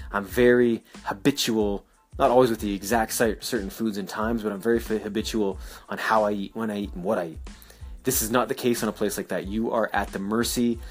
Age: 20-39